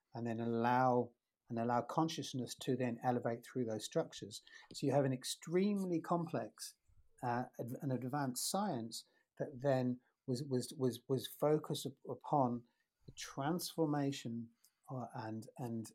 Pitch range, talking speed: 120-140 Hz, 135 wpm